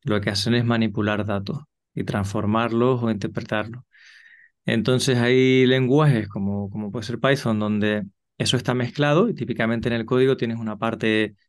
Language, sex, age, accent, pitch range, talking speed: Spanish, male, 20-39, Spanish, 110-130 Hz, 155 wpm